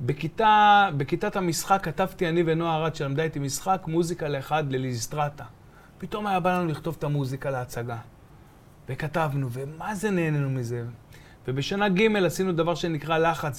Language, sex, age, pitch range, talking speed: Hebrew, male, 30-49, 140-190 Hz, 140 wpm